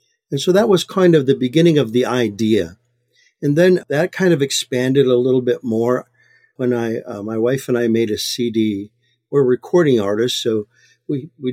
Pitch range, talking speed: 115-140 Hz, 195 wpm